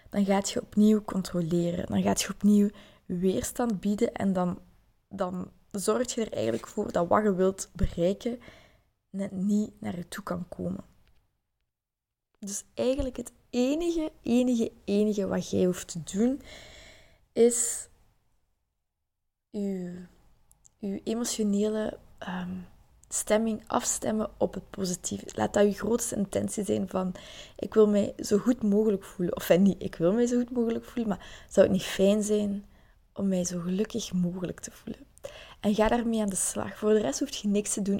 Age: 20-39